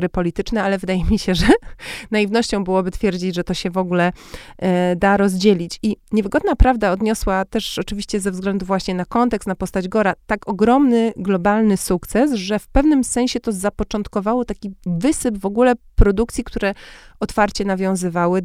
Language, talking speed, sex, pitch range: Polish, 155 wpm, female, 185-210 Hz